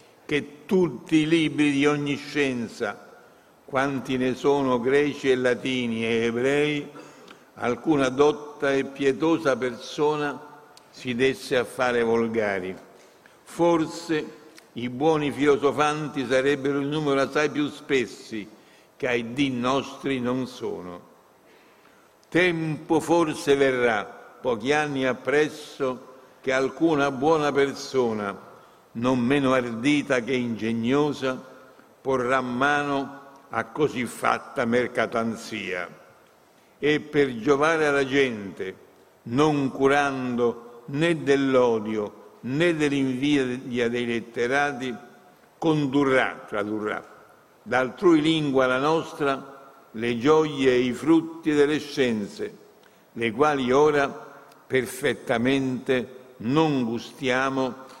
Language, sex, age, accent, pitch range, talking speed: Italian, male, 60-79, native, 125-145 Hz, 95 wpm